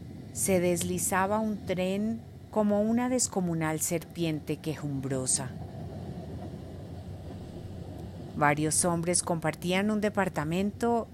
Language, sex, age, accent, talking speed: Spanish, female, 40-59, Colombian, 75 wpm